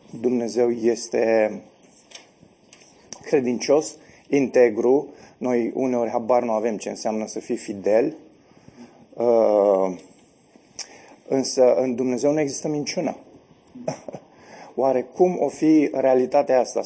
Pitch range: 125-160 Hz